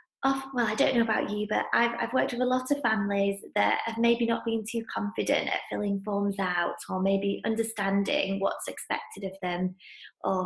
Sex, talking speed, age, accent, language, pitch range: female, 195 wpm, 20-39, British, English, 195-240 Hz